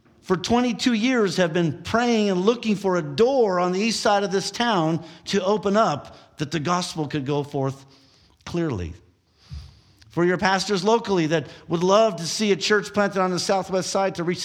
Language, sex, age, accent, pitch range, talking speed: English, male, 50-69, American, 120-175 Hz, 190 wpm